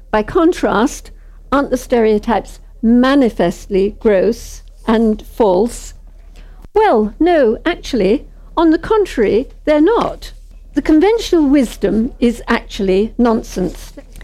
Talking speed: 95 wpm